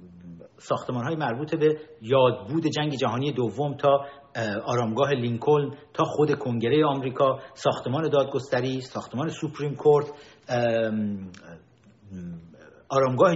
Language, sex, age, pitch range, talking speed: Persian, male, 50-69, 120-175 Hz, 95 wpm